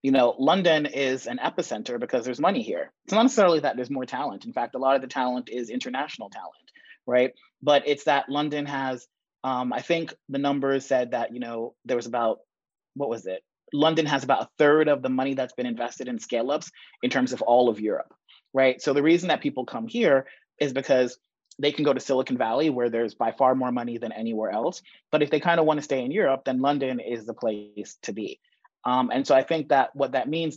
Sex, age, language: male, 30-49, English